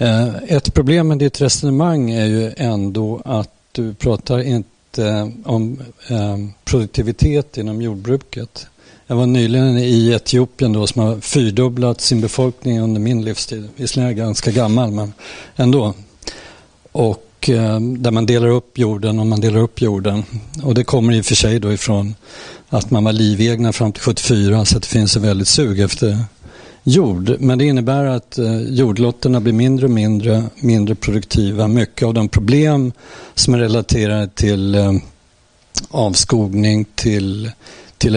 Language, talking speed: Swedish, 150 wpm